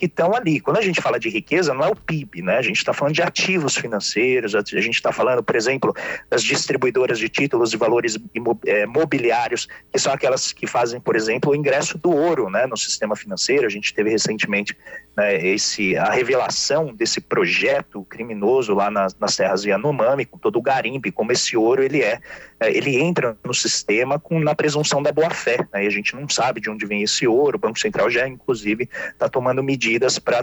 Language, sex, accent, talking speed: Portuguese, male, Brazilian, 205 wpm